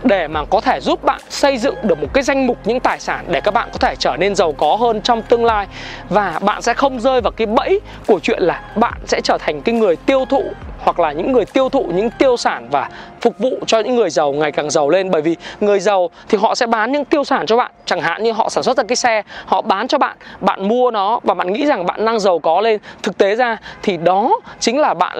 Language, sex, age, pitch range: Vietnamese, male, 20-39, 190-260 Hz